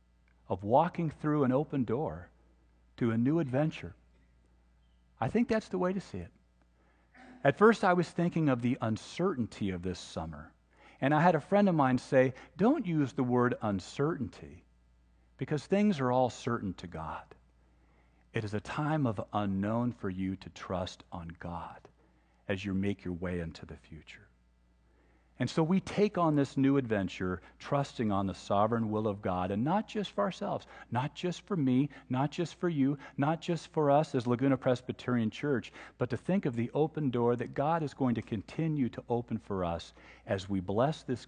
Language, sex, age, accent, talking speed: English, male, 50-69, American, 185 wpm